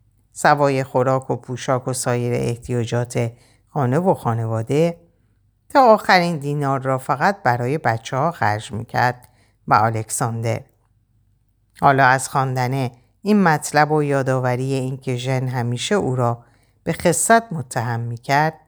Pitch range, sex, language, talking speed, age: 115-150 Hz, female, Persian, 125 wpm, 50-69